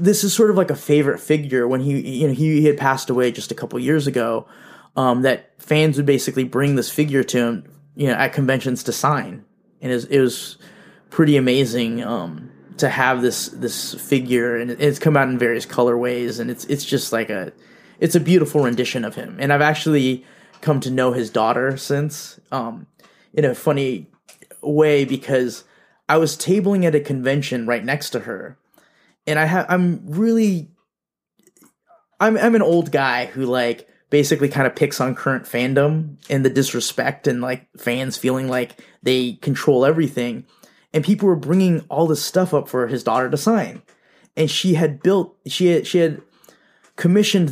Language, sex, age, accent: English, male, 20-39, American